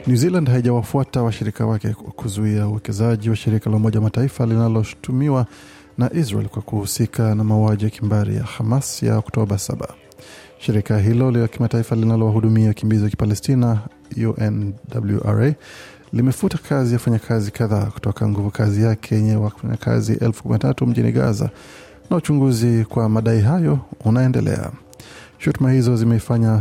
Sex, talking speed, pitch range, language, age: male, 135 wpm, 110-130 Hz, Swahili, 30-49